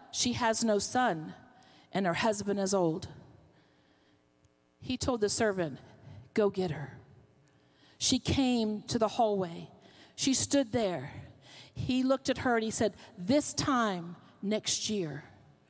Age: 50-69